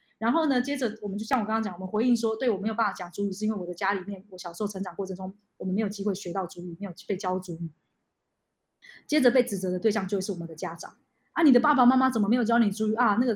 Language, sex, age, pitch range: Chinese, female, 20-39, 190-235 Hz